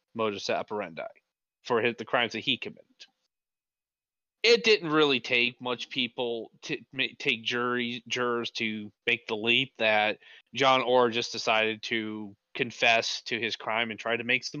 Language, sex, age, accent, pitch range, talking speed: English, male, 30-49, American, 115-130 Hz, 150 wpm